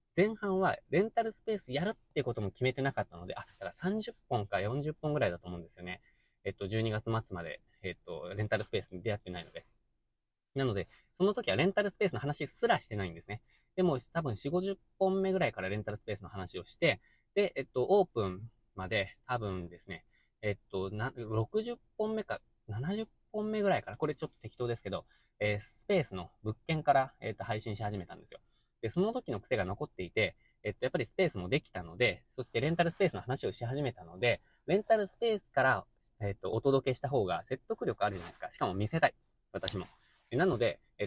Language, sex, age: Japanese, male, 20-39